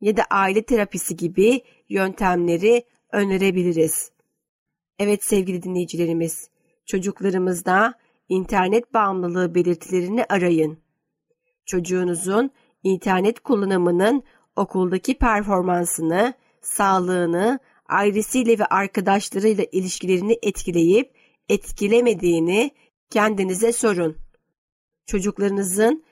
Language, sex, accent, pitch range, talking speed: Turkish, female, native, 180-225 Hz, 70 wpm